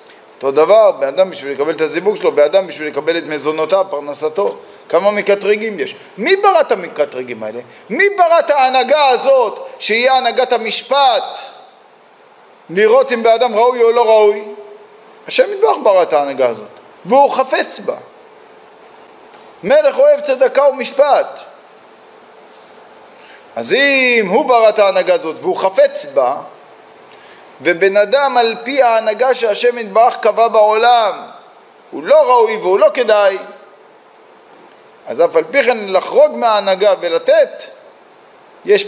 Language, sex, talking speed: Hebrew, male, 130 wpm